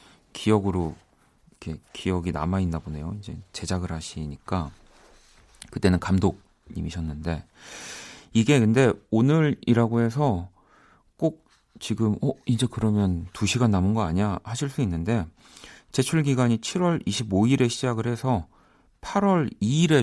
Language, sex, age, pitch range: Korean, male, 40-59, 90-120 Hz